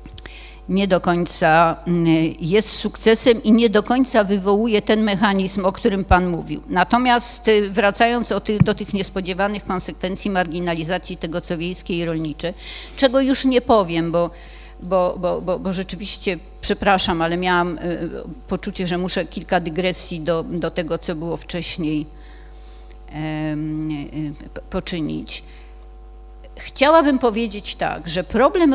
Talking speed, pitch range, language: 115 wpm, 175-215 Hz, Polish